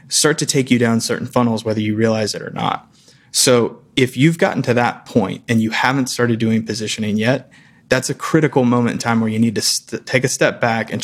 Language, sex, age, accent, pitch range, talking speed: English, male, 20-39, American, 115-130 Hz, 230 wpm